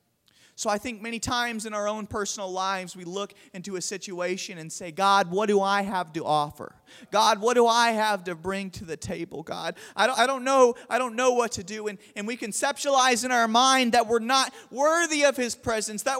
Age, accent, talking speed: 30-49, American, 225 wpm